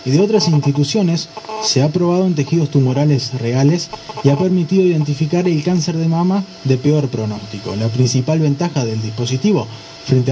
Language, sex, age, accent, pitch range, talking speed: Spanish, male, 20-39, Argentinian, 130-165 Hz, 165 wpm